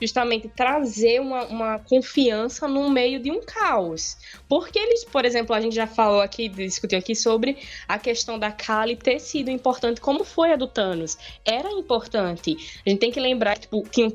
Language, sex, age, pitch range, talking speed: Portuguese, female, 10-29, 210-270 Hz, 185 wpm